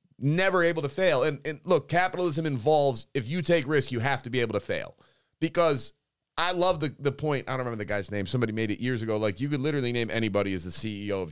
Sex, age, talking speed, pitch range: male, 30-49, 250 wpm, 120-170 Hz